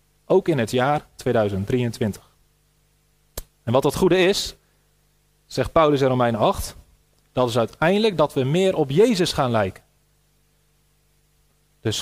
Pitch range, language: 125-170 Hz, Dutch